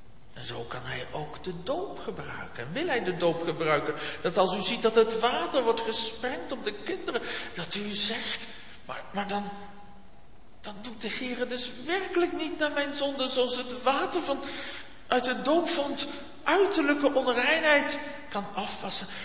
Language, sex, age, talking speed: Dutch, male, 60-79, 170 wpm